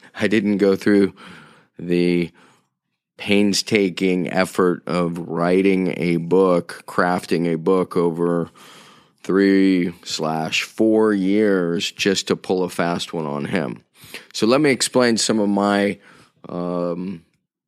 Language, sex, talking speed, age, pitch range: English, male, 120 wpm, 30-49, 85-100 Hz